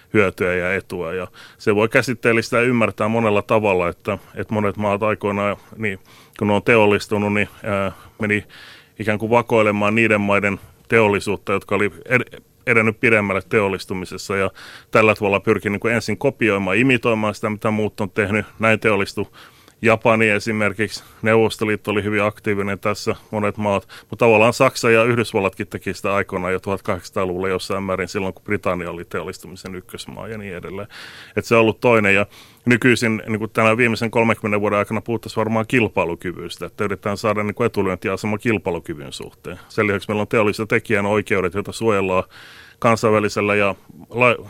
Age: 30-49